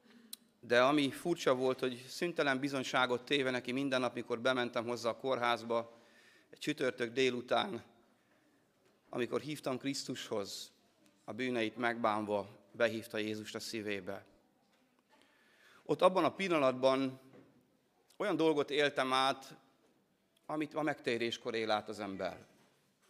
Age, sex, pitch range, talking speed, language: 30-49, male, 110-135 Hz, 115 wpm, Hungarian